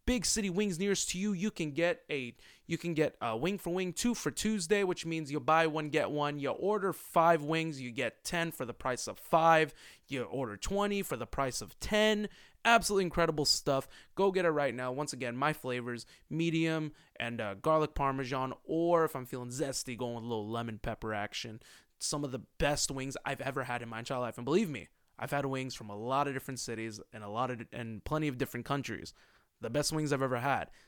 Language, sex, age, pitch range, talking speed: English, male, 20-39, 125-165 Hz, 225 wpm